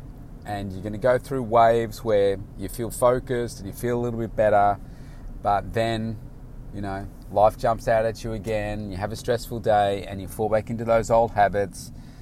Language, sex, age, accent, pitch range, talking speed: English, male, 30-49, Australian, 95-115 Hz, 200 wpm